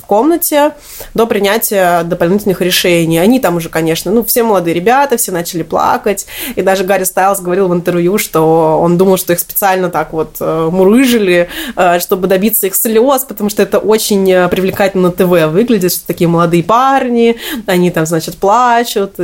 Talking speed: 160 wpm